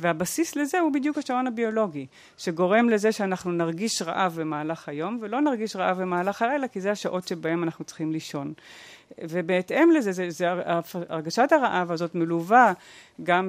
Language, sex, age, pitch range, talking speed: Hebrew, female, 40-59, 170-215 Hz, 150 wpm